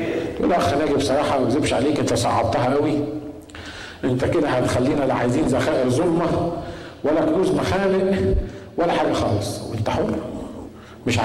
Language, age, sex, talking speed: Arabic, 50-69, male, 135 wpm